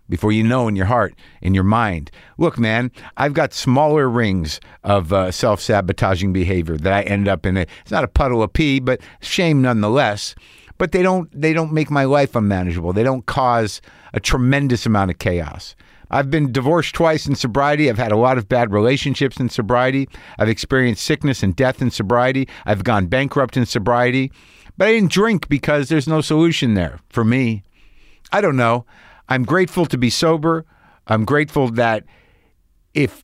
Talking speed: 180 wpm